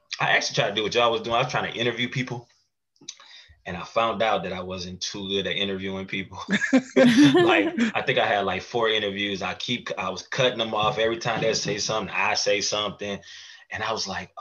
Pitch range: 100-120 Hz